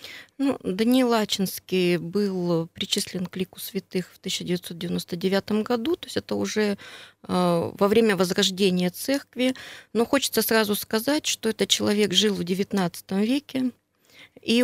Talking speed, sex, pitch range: 130 wpm, female, 185-230 Hz